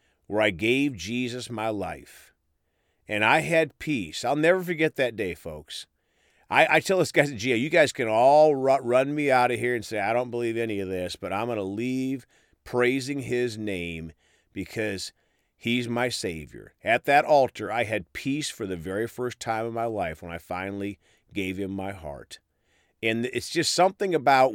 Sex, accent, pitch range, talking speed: male, American, 95-140 Hz, 190 wpm